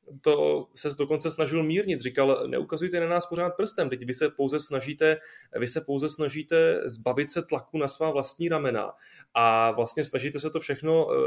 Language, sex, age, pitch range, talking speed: Czech, male, 20-39, 135-160 Hz, 175 wpm